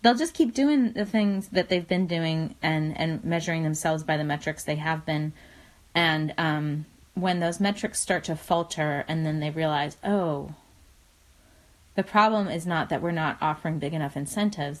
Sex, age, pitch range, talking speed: female, 20-39, 155-205 Hz, 180 wpm